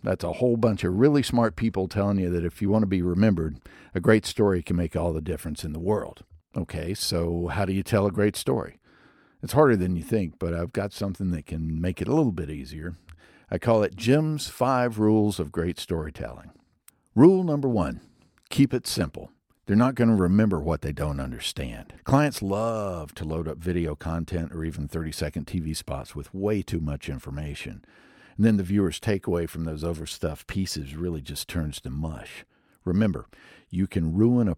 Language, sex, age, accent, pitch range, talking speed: English, male, 60-79, American, 80-105 Hz, 200 wpm